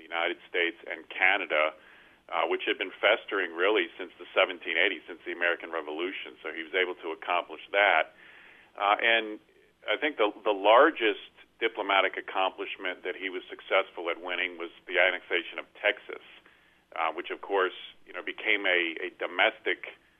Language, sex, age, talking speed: English, male, 40-59, 160 wpm